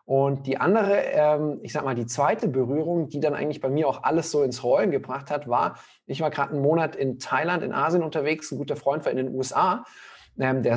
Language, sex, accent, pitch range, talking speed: German, male, German, 135-160 Hz, 225 wpm